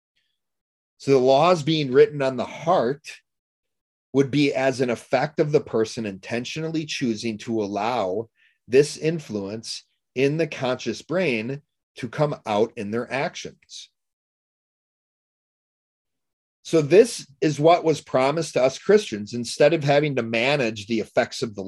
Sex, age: male, 40-59